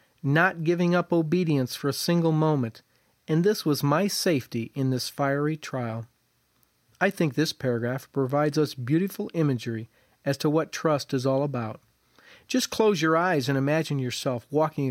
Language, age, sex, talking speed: English, 40-59, male, 160 wpm